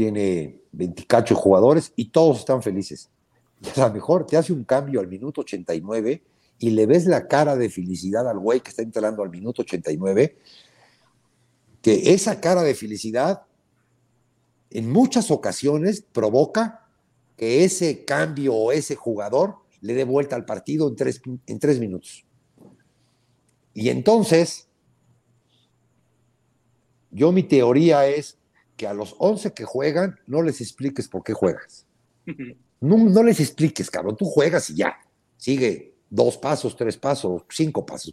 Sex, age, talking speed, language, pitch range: male, 50-69, 145 wpm, Spanish, 105-155 Hz